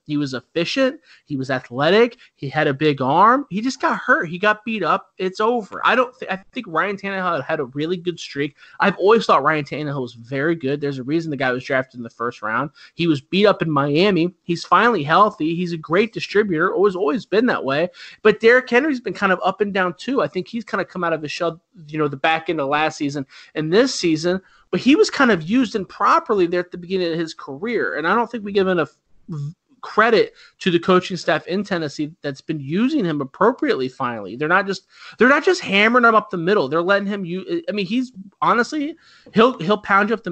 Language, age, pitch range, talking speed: English, 30-49, 150-205 Hz, 245 wpm